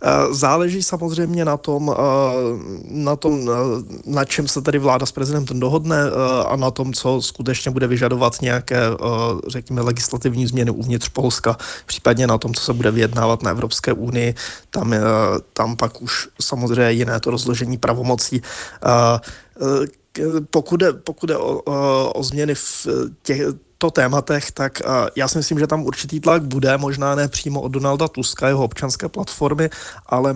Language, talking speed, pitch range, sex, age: Czech, 140 wpm, 120-140 Hz, male, 20-39